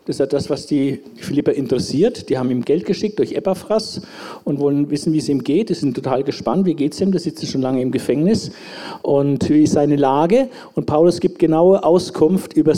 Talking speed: 225 wpm